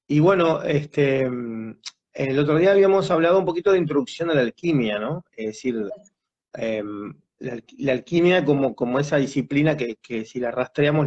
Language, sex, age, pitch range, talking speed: Spanish, male, 30-49, 120-155 Hz, 170 wpm